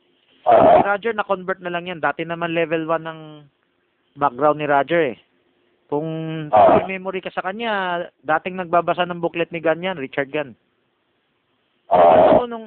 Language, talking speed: Filipino, 140 wpm